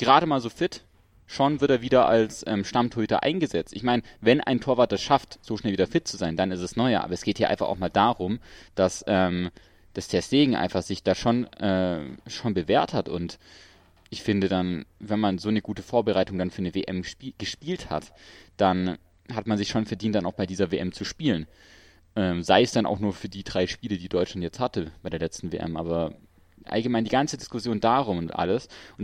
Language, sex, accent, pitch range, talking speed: German, male, German, 90-110 Hz, 220 wpm